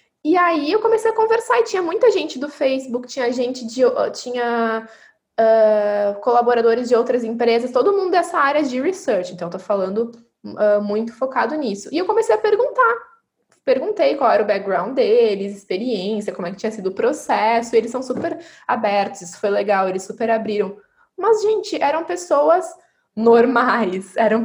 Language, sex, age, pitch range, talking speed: Portuguese, female, 10-29, 210-265 Hz, 175 wpm